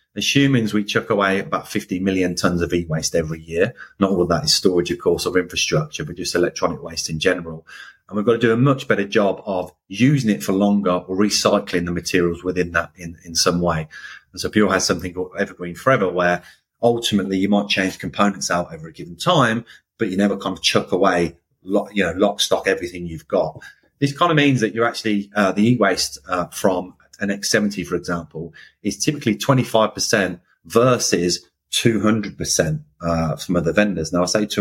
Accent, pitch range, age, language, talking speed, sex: British, 85-105 Hz, 30-49, English, 200 wpm, male